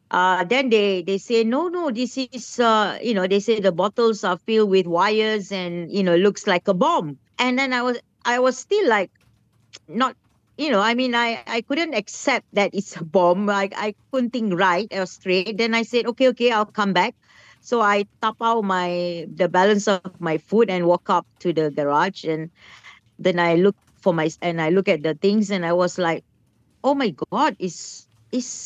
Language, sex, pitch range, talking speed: English, female, 170-225 Hz, 210 wpm